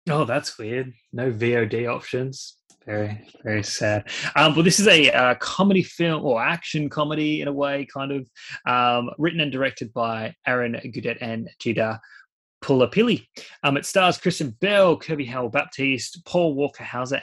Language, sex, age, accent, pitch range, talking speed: English, male, 20-39, Australian, 115-140 Hz, 155 wpm